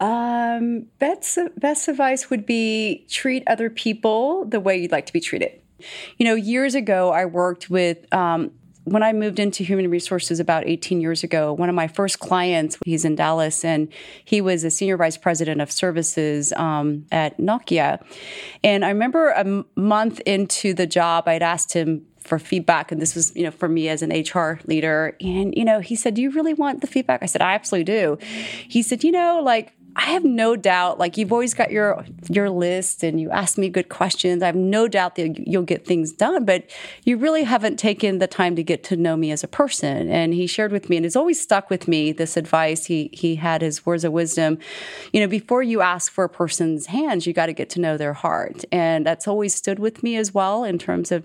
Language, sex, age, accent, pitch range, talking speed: English, female, 30-49, American, 165-215 Hz, 220 wpm